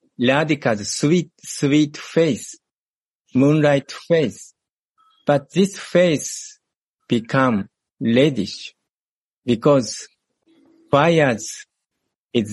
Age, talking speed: 50-69, 65 wpm